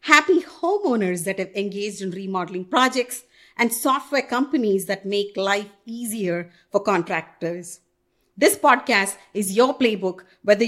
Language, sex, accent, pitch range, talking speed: English, female, Indian, 180-240 Hz, 130 wpm